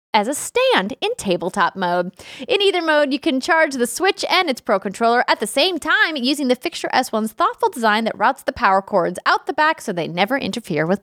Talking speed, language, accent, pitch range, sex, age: 225 wpm, English, American, 200-285 Hz, female, 20-39